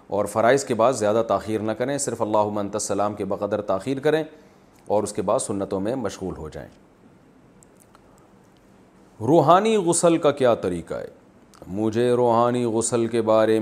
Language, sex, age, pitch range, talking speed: Urdu, male, 40-59, 105-135 Hz, 160 wpm